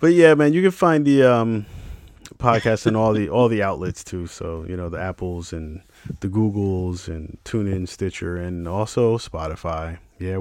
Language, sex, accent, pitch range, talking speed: English, male, American, 85-105 Hz, 180 wpm